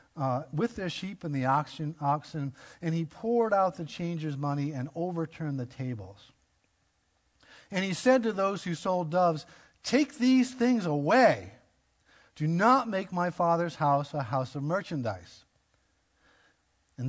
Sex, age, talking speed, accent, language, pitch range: male, 50-69, 145 wpm, American, English, 115-160 Hz